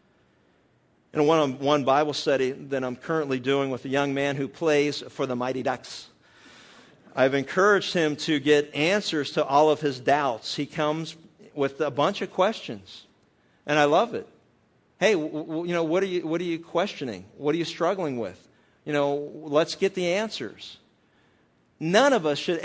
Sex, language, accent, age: male, English, American, 50-69